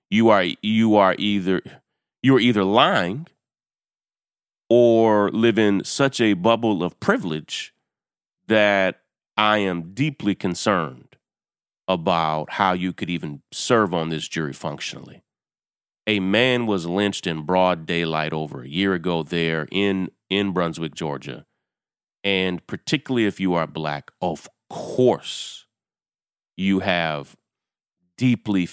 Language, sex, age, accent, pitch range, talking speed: English, male, 30-49, American, 85-105 Hz, 125 wpm